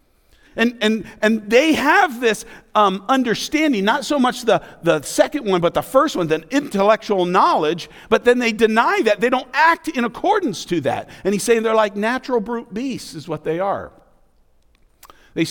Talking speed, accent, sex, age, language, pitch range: 180 wpm, American, male, 50-69, English, 155-230 Hz